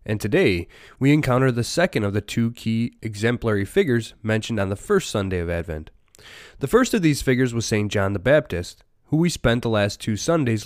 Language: English